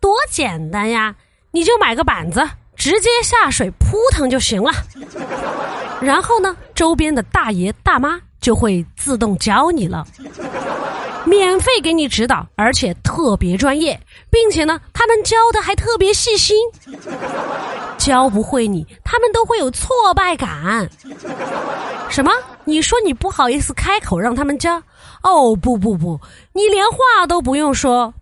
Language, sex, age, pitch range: Chinese, female, 20-39, 225-380 Hz